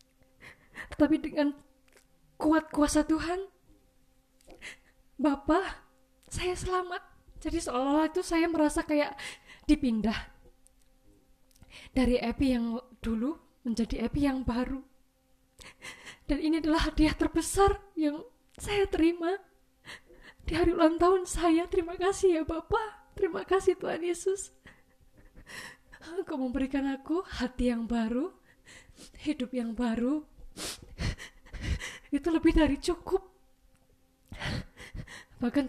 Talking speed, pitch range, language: 95 wpm, 240-320 Hz, Indonesian